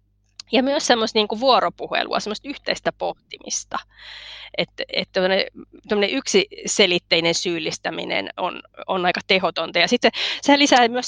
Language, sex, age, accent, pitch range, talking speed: Finnish, female, 20-39, native, 185-250 Hz, 125 wpm